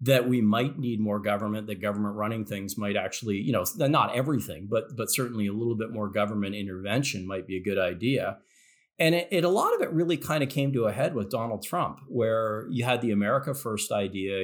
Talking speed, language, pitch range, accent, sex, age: 225 wpm, English, 100-120 Hz, American, male, 40-59